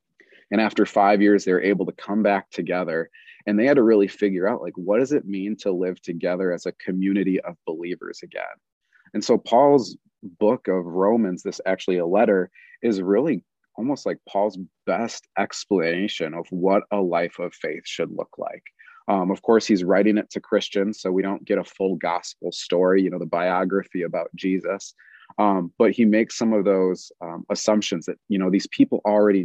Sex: male